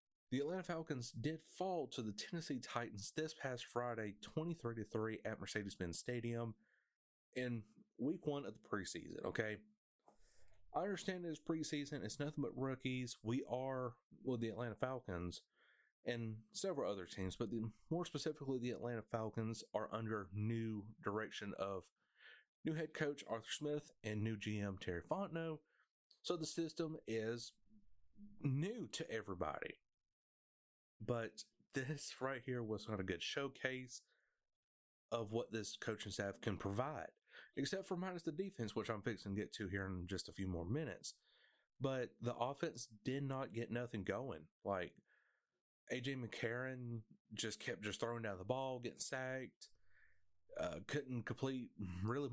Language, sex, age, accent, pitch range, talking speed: English, male, 30-49, American, 105-145 Hz, 145 wpm